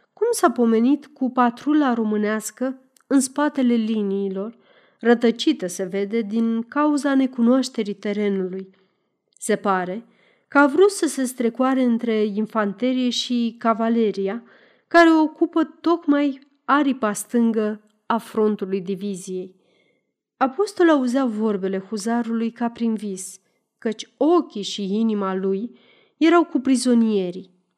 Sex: female